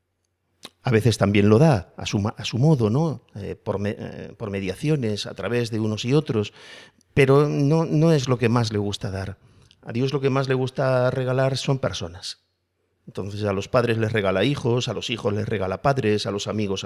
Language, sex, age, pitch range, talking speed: Spanish, male, 50-69, 100-130 Hz, 195 wpm